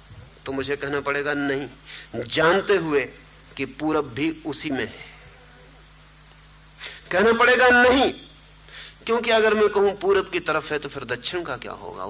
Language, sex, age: Hindi, male, 50-69